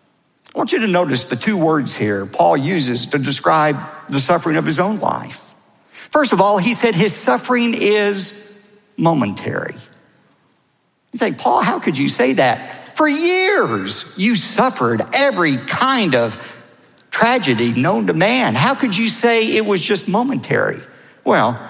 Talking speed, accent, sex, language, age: 155 wpm, American, male, English, 50-69